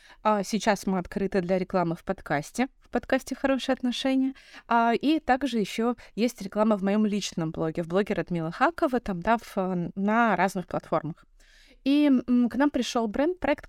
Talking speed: 150 wpm